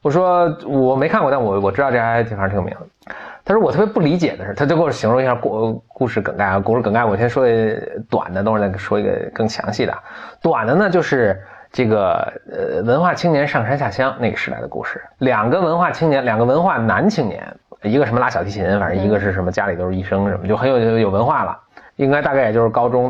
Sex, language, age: male, Chinese, 20-39